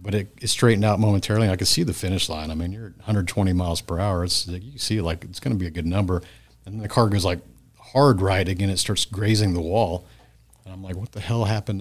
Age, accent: 40-59, American